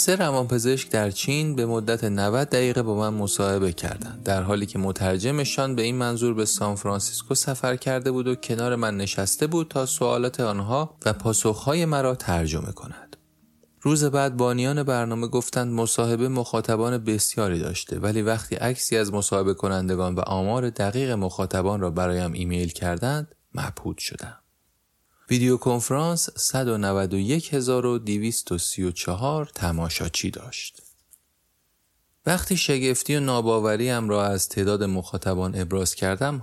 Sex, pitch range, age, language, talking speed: male, 95-130 Hz, 30-49, Persian, 125 wpm